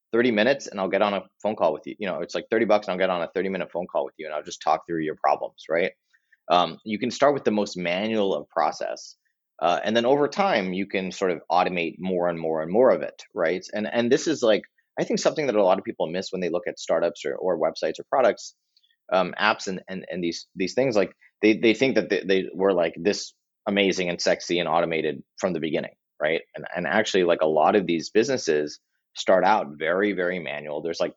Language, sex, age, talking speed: English, male, 30-49, 250 wpm